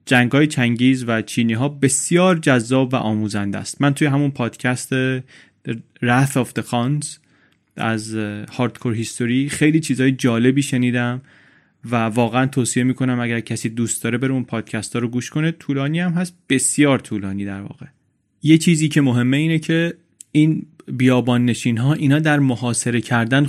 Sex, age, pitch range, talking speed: male, 30-49, 115-140 Hz, 155 wpm